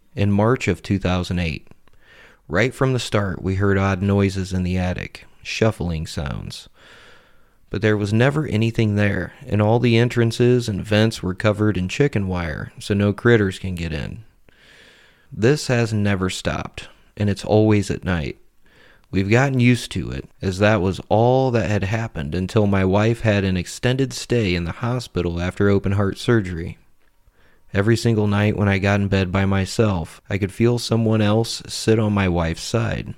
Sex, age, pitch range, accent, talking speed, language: male, 30-49, 95-115 Hz, American, 170 wpm, English